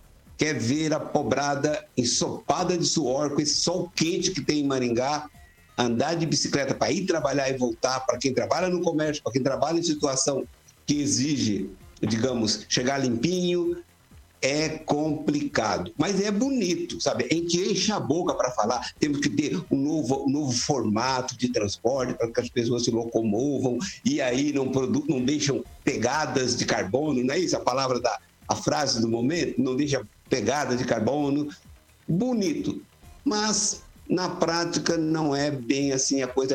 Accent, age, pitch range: Brazilian, 60-79, 130-170 Hz